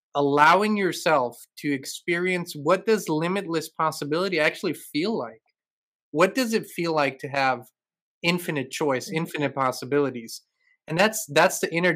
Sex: male